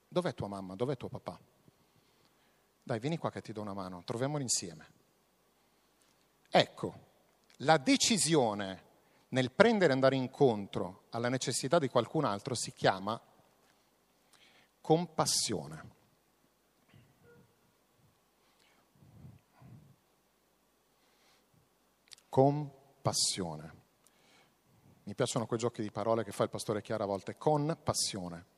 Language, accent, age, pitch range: Italian, native, 50-69, 105-135 Hz